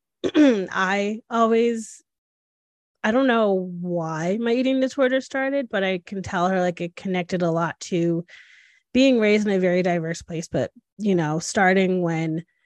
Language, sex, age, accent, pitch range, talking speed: English, female, 20-39, American, 170-210 Hz, 155 wpm